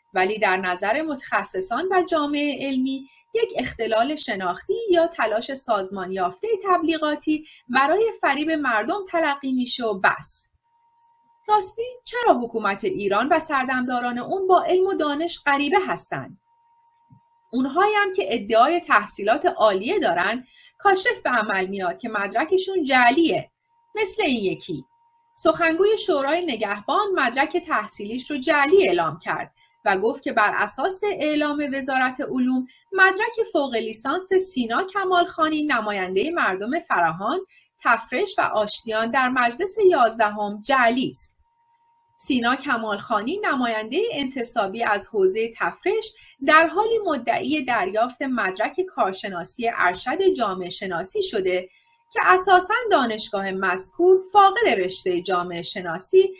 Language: Persian